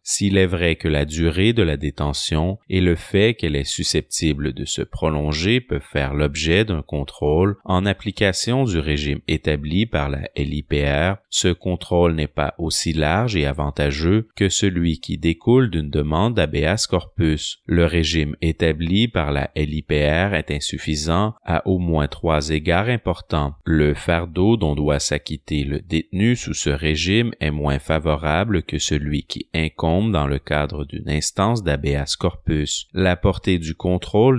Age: 30-49